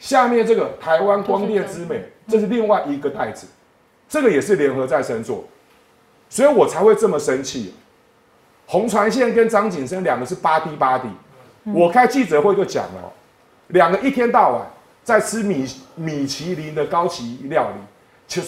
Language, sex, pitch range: Chinese, male, 160-230 Hz